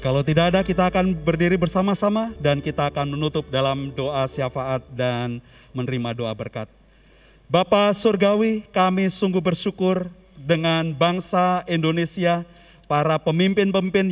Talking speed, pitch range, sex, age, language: 120 wpm, 155-190 Hz, male, 40-59, Indonesian